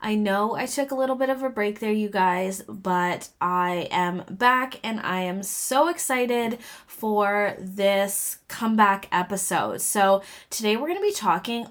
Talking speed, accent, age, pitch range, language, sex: 170 wpm, American, 20-39, 185-245 Hz, English, female